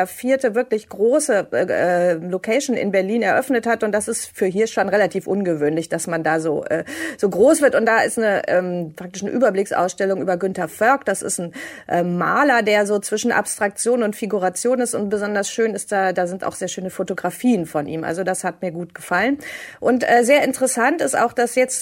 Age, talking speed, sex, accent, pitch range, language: 30-49, 210 wpm, female, German, 185-240 Hz, German